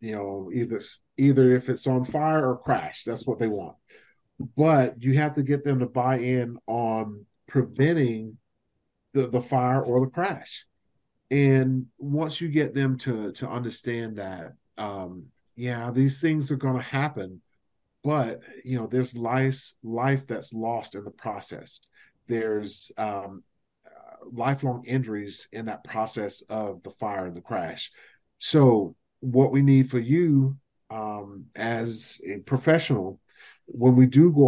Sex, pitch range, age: male, 110-135 Hz, 40-59